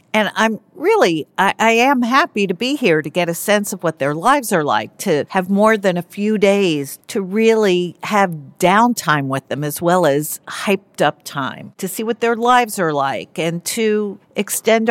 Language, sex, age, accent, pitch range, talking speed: English, female, 50-69, American, 160-215 Hz, 195 wpm